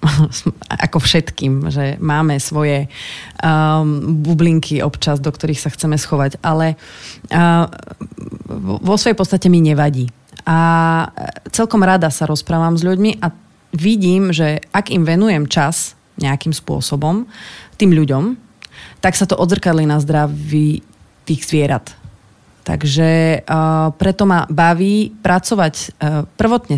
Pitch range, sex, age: 150-175 Hz, female, 30-49